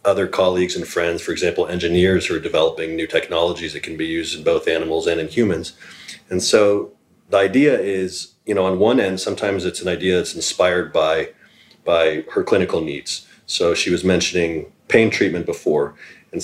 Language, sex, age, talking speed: English, male, 30-49, 185 wpm